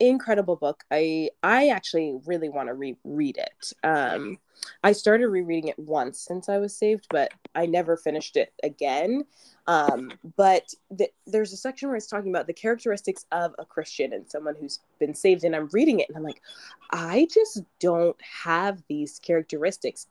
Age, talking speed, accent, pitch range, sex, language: 20-39, 175 wpm, American, 170-240 Hz, female, English